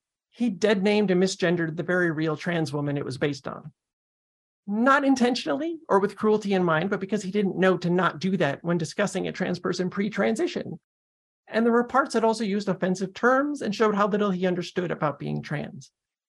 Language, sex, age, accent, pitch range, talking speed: English, male, 40-59, American, 165-210 Hz, 195 wpm